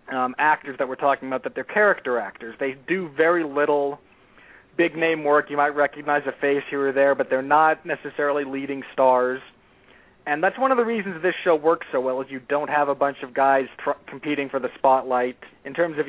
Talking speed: 215 wpm